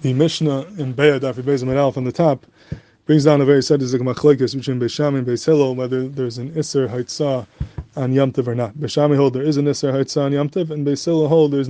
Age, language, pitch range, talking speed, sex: 20-39, English, 130-150 Hz, 210 wpm, male